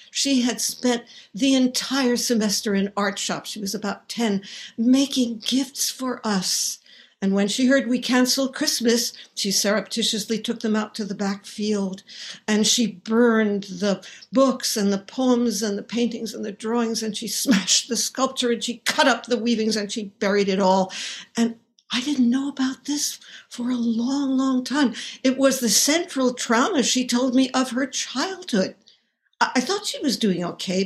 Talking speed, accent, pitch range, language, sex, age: 175 wpm, American, 200-260 Hz, English, female, 60-79